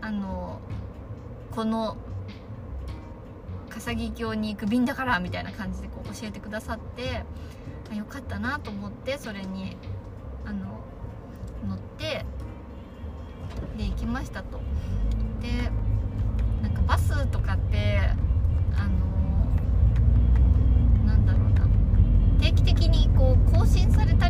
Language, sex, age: Japanese, female, 20-39